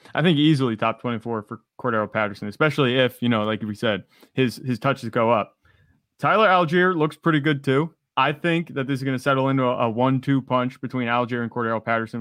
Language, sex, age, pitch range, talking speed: English, male, 20-39, 115-140 Hz, 215 wpm